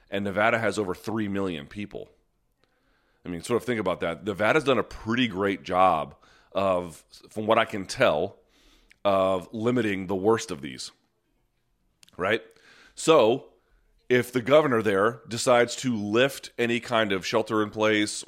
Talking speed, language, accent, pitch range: 150 wpm, English, American, 95-115 Hz